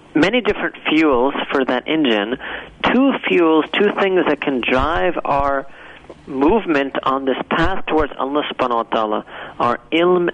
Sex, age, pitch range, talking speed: male, 40-59, 135-175 Hz, 145 wpm